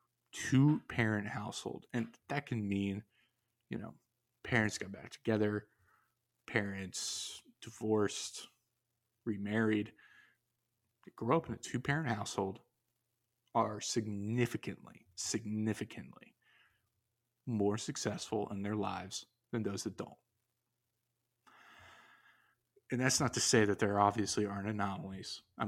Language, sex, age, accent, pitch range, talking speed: English, male, 20-39, American, 105-120 Hz, 105 wpm